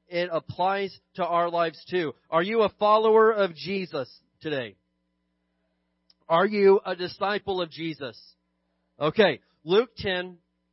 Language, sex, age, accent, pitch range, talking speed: English, male, 30-49, American, 180-245 Hz, 125 wpm